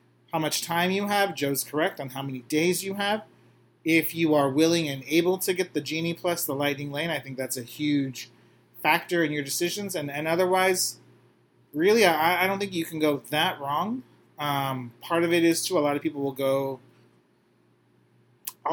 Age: 30-49